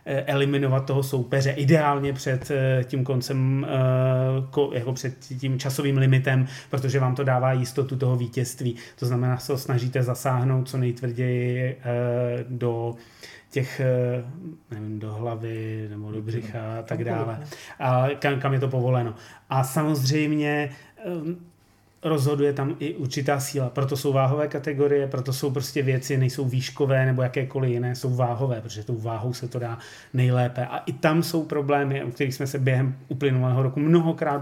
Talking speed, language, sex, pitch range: 145 wpm, Czech, male, 125-140 Hz